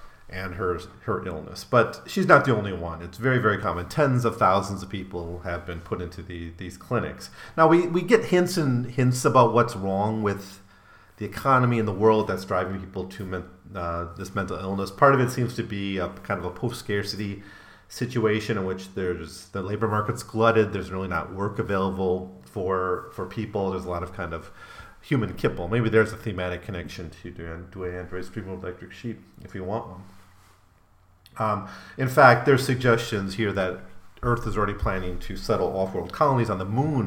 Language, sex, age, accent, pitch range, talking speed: English, male, 40-59, American, 90-110 Hz, 195 wpm